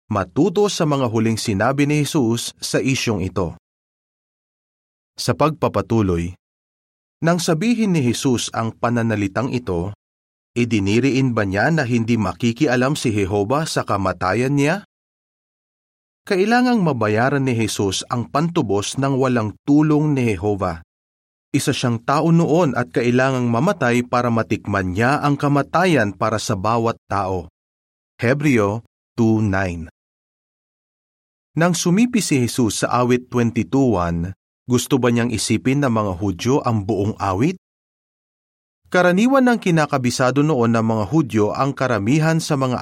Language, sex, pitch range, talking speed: Filipino, male, 105-145 Hz, 125 wpm